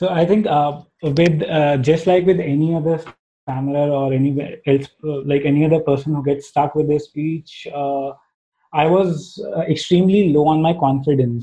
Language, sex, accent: English, male, Indian